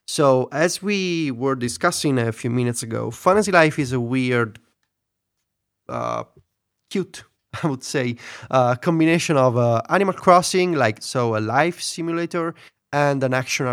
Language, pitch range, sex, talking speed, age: English, 115-145 Hz, male, 145 wpm, 30-49